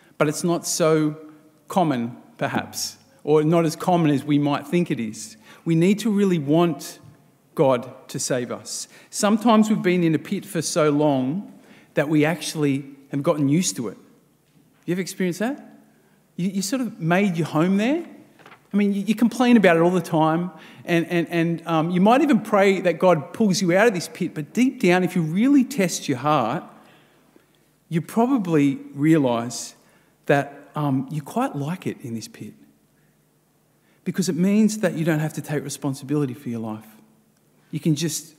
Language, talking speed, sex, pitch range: English, 185 wpm, male, 140-180 Hz